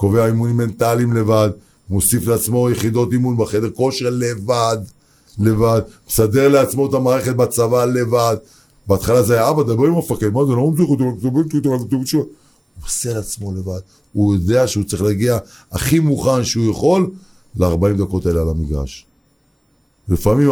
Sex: male